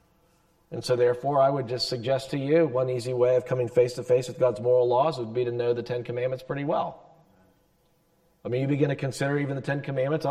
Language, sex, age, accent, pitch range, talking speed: English, male, 40-59, American, 130-170 Hz, 240 wpm